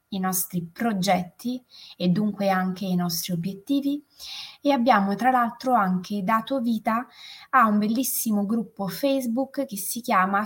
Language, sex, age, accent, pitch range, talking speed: Italian, female, 20-39, native, 180-250 Hz, 140 wpm